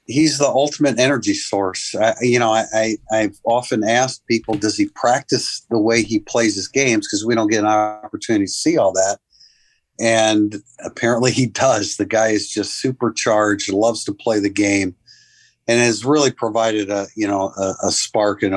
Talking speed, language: 185 wpm, English